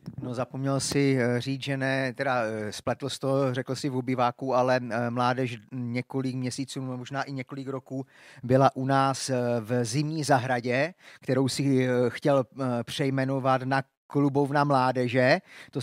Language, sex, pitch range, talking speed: Czech, male, 130-155 Hz, 135 wpm